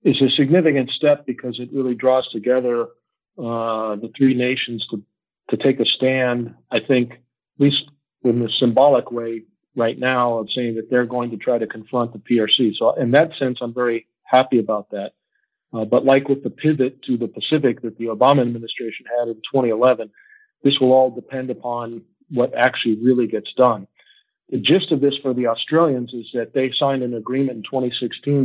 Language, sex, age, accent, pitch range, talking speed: English, male, 50-69, American, 115-135 Hz, 190 wpm